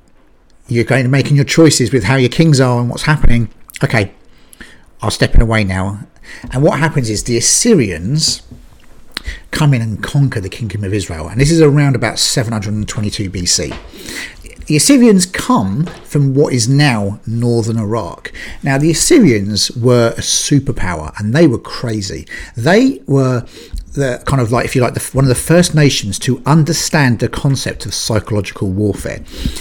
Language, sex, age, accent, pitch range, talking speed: English, male, 50-69, British, 105-140 Hz, 170 wpm